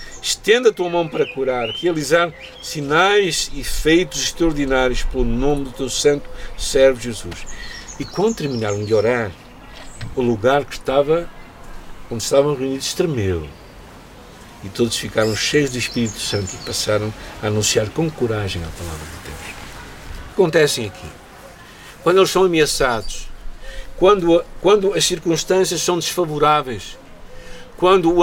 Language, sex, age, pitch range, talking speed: Portuguese, male, 60-79, 120-175 Hz, 135 wpm